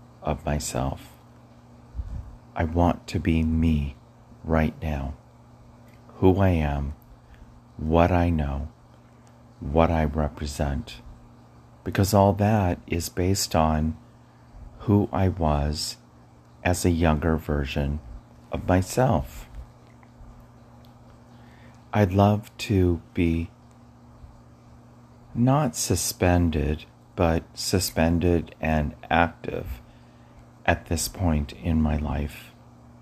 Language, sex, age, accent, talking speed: English, male, 40-59, American, 90 wpm